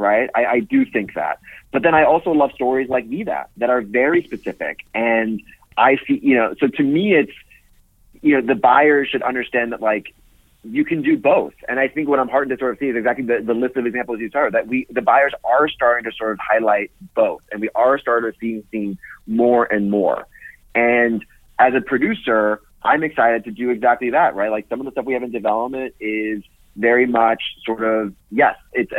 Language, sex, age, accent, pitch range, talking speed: English, male, 30-49, American, 110-135 Hz, 220 wpm